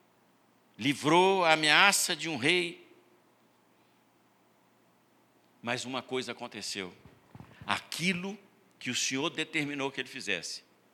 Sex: male